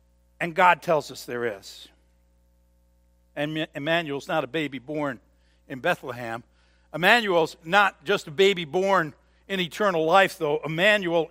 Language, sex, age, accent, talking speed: English, male, 60-79, American, 135 wpm